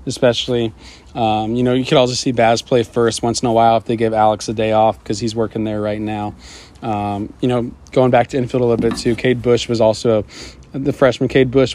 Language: English